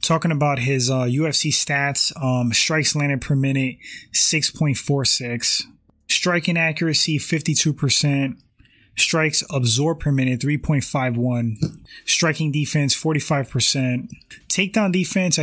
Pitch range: 125-155 Hz